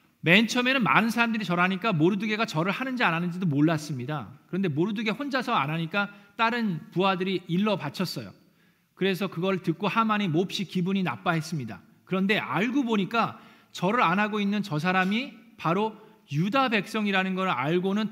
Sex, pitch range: male, 165-215 Hz